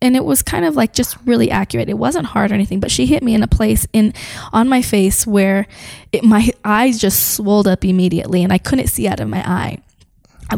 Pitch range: 190-230 Hz